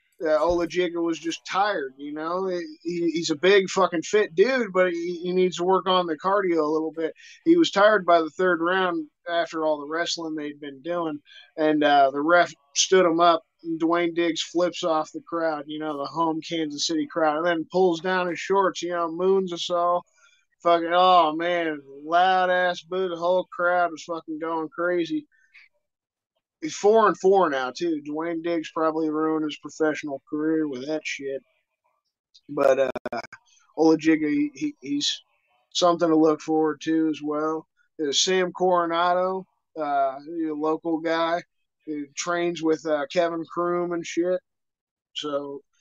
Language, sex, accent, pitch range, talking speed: English, male, American, 150-180 Hz, 170 wpm